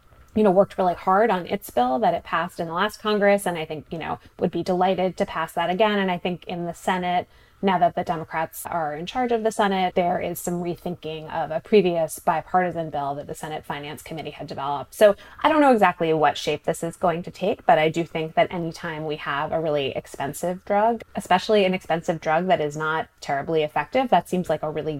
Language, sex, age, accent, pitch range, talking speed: English, female, 20-39, American, 160-205 Hz, 235 wpm